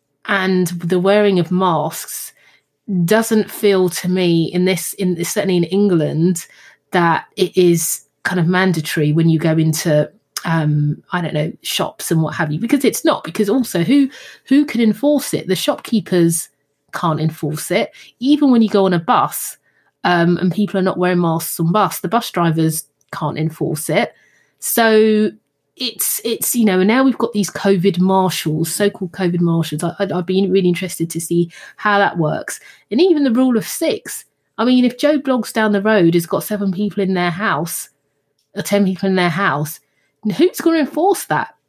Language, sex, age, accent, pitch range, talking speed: English, female, 30-49, British, 165-220 Hz, 190 wpm